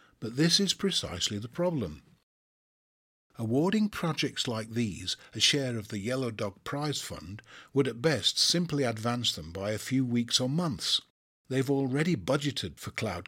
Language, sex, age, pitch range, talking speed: English, male, 50-69, 105-140 Hz, 160 wpm